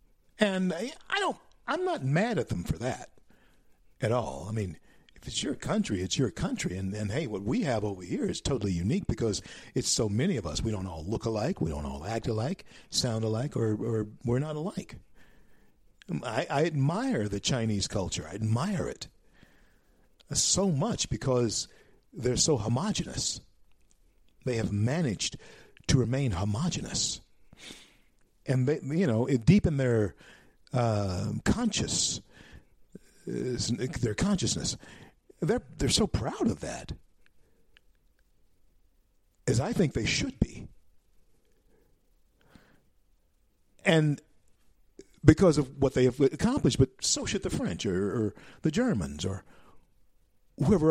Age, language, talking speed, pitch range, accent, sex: 50-69, English, 140 wpm, 100-150 Hz, American, male